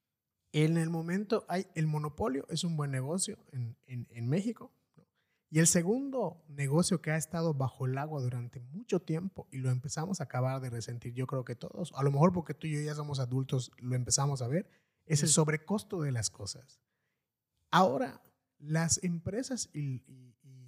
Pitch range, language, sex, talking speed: 130-175 Hz, Spanish, male, 190 wpm